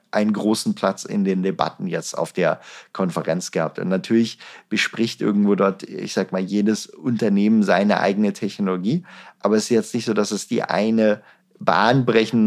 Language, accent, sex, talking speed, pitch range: German, German, male, 170 wpm, 100-125 Hz